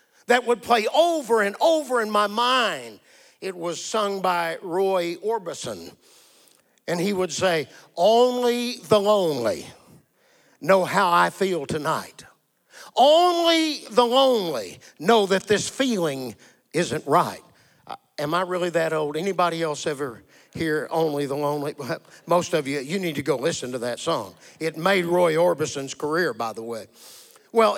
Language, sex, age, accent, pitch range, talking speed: English, male, 50-69, American, 175-235 Hz, 150 wpm